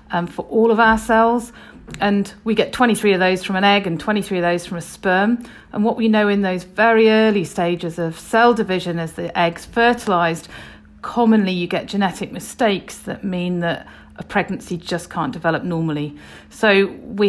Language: English